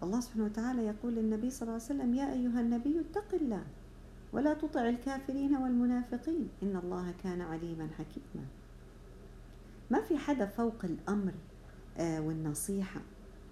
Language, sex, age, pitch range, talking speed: Arabic, female, 50-69, 155-225 Hz, 130 wpm